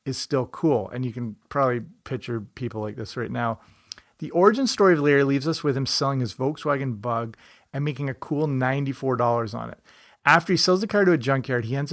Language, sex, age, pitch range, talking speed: English, male, 30-49, 125-160 Hz, 215 wpm